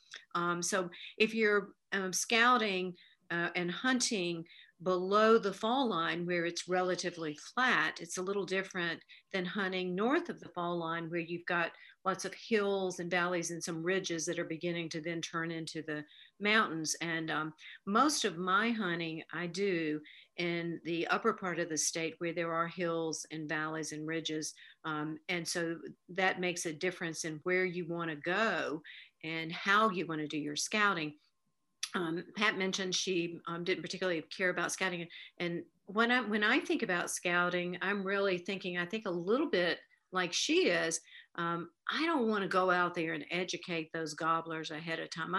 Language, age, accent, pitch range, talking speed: English, 50-69, American, 165-195 Hz, 175 wpm